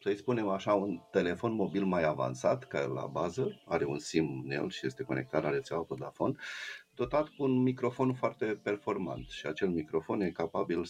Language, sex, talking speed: Romanian, male, 185 wpm